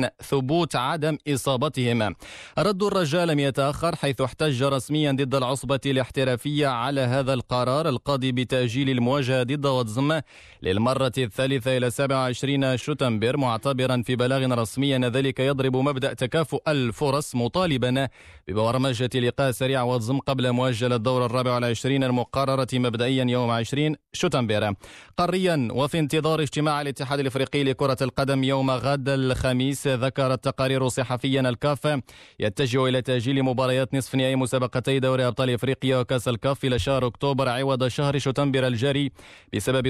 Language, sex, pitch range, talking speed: Arabic, male, 125-140 Hz, 125 wpm